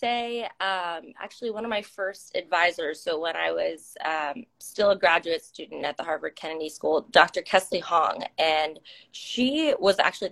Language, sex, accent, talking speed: English, female, American, 170 wpm